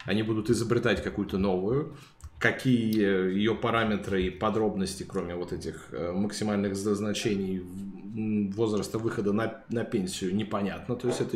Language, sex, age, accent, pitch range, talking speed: Russian, male, 20-39, native, 100-120 Hz, 125 wpm